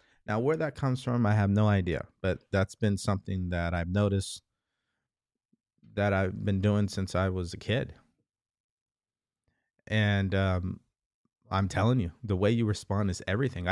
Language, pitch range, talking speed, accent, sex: English, 95-120 Hz, 160 wpm, American, male